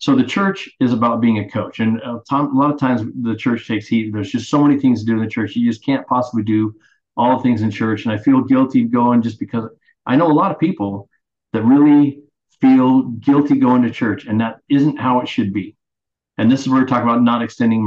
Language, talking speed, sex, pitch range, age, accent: English, 250 wpm, male, 110-155 Hz, 40-59, American